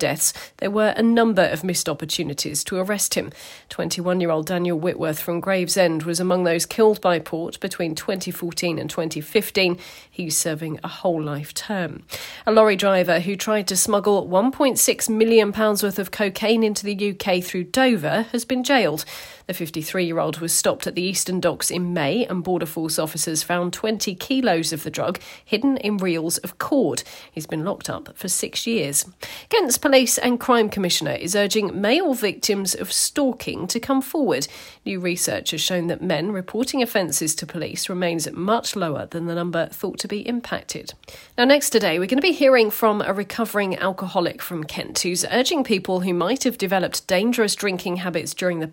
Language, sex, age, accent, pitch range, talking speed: English, female, 40-59, British, 170-220 Hz, 175 wpm